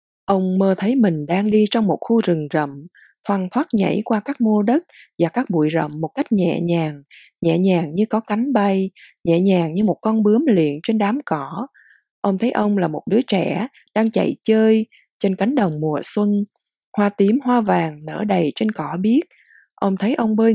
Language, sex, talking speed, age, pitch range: Vietnamese, female, 205 wpm, 20-39, 175-225 Hz